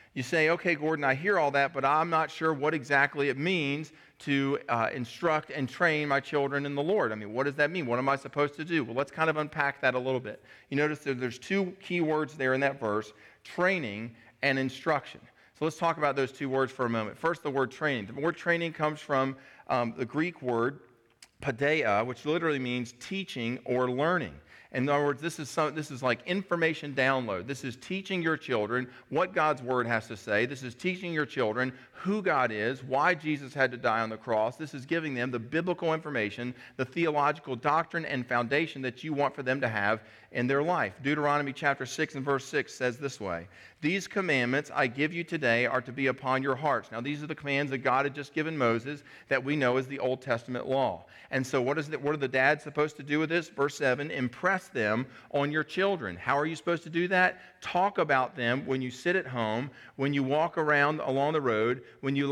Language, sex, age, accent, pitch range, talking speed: English, male, 40-59, American, 125-155 Hz, 225 wpm